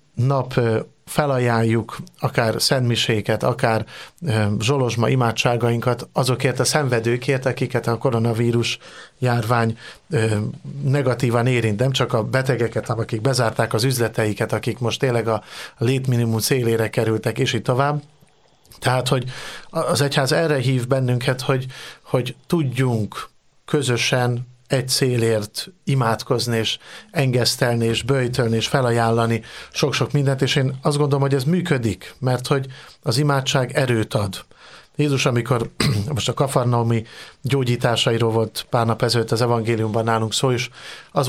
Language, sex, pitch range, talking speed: Hungarian, male, 115-140 Hz, 120 wpm